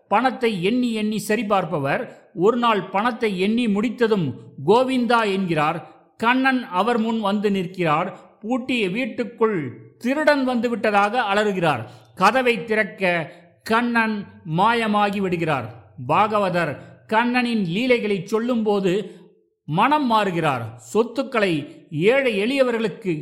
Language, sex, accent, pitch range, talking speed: Tamil, male, native, 165-230 Hz, 90 wpm